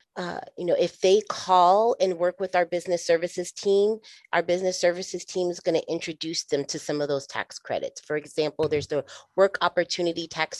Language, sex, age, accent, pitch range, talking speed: English, female, 30-49, American, 165-185 Hz, 200 wpm